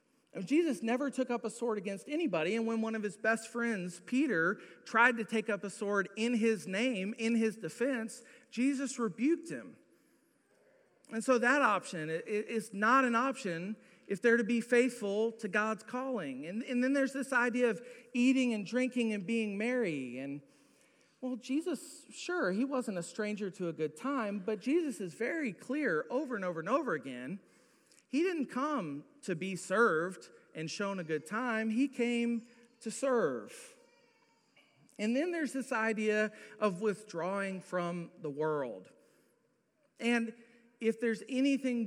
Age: 40-59